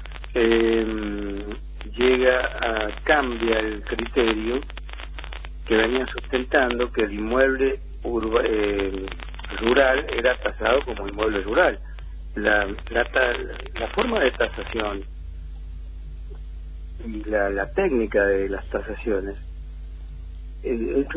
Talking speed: 95 wpm